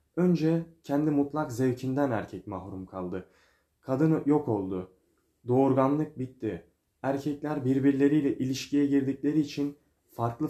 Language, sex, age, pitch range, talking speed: Turkish, male, 30-49, 110-145 Hz, 105 wpm